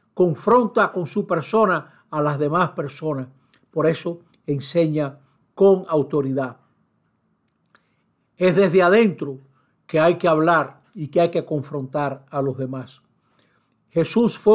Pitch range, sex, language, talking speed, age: 150-200 Hz, male, Spanish, 125 wpm, 60-79